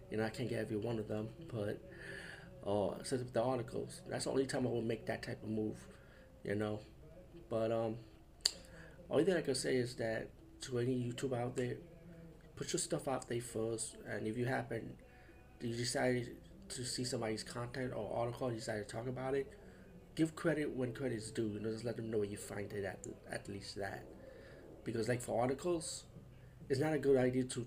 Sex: male